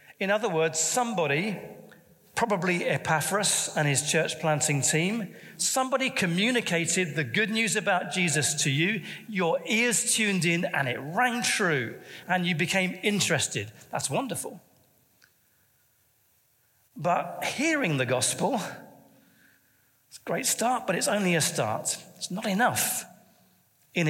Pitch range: 150-195 Hz